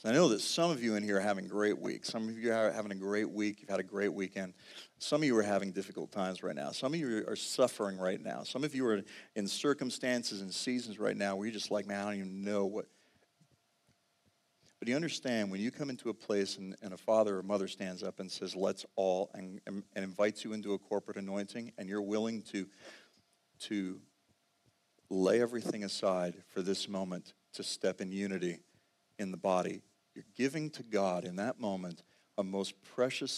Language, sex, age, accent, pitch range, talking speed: English, male, 50-69, American, 95-110 Hz, 210 wpm